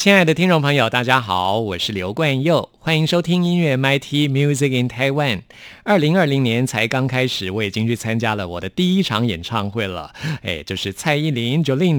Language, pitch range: Chinese, 105-140 Hz